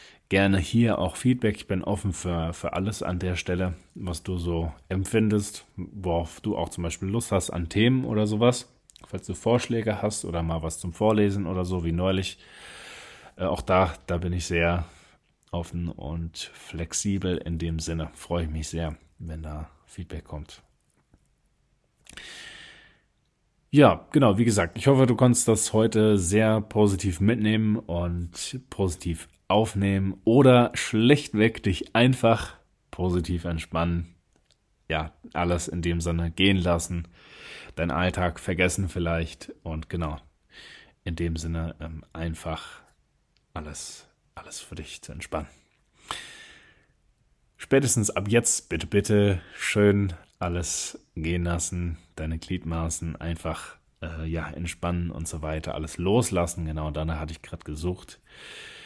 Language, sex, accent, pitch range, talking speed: German, male, German, 85-105 Hz, 135 wpm